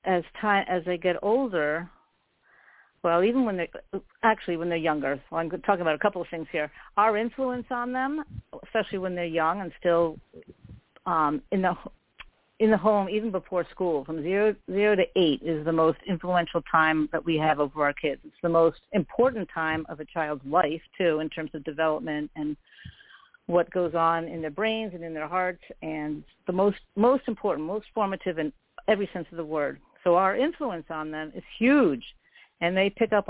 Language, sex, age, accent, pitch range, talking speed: English, female, 50-69, American, 165-215 Hz, 195 wpm